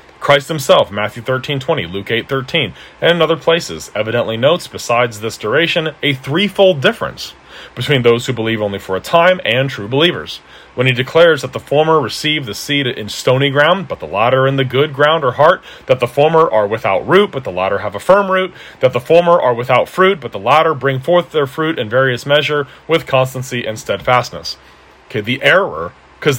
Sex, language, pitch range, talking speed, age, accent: male, English, 115-160 Hz, 200 wpm, 40-59, American